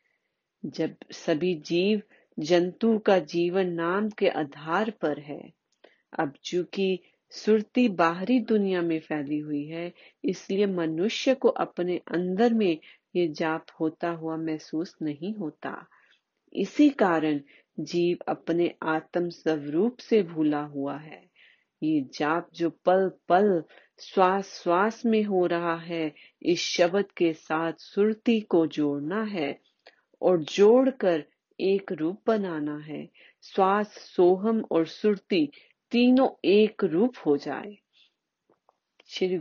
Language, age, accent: Hindi, 40-59, native